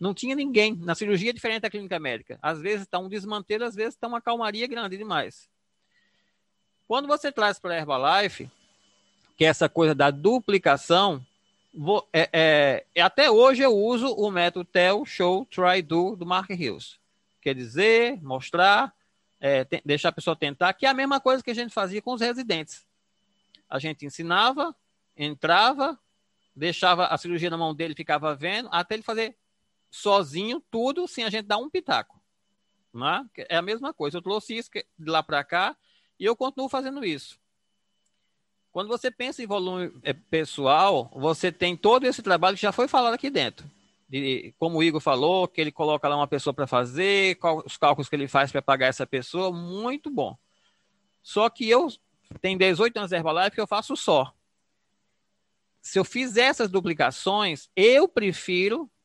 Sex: male